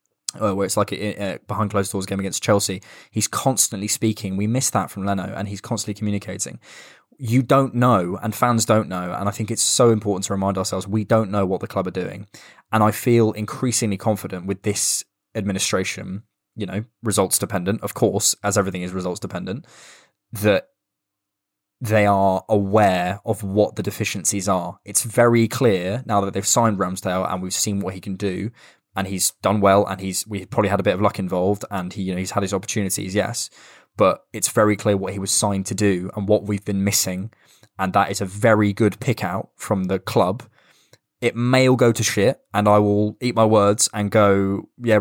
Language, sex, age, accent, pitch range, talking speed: English, male, 20-39, British, 95-110 Hz, 200 wpm